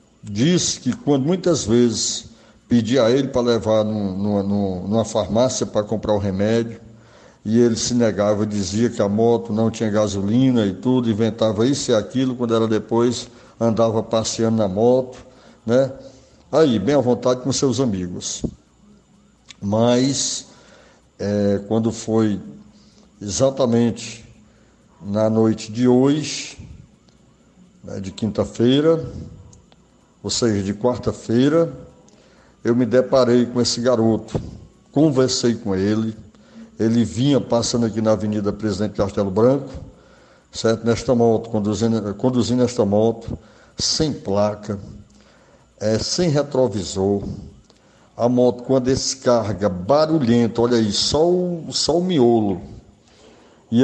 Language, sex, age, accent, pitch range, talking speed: Portuguese, male, 60-79, Brazilian, 105-125 Hz, 120 wpm